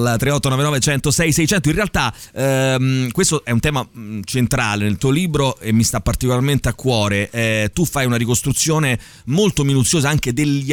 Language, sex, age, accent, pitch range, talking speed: Italian, male, 30-49, native, 115-145 Hz, 160 wpm